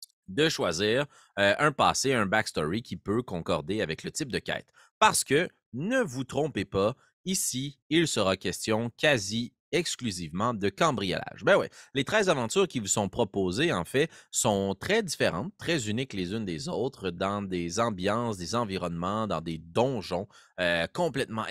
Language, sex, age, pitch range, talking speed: French, male, 30-49, 95-160 Hz, 165 wpm